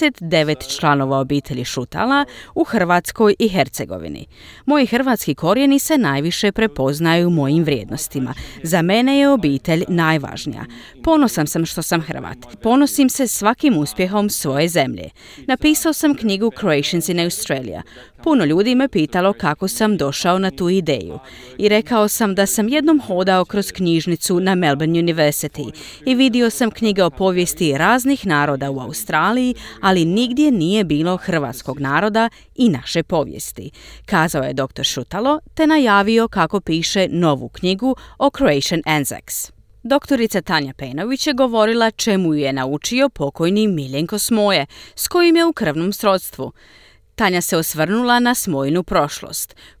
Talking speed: 140 wpm